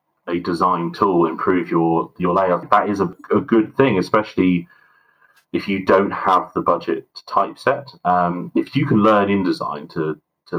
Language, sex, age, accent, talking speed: English, male, 30-49, British, 170 wpm